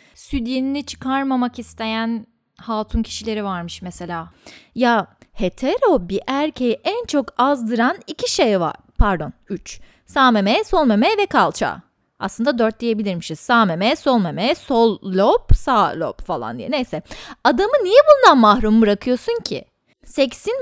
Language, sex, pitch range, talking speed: Turkish, female, 215-330 Hz, 135 wpm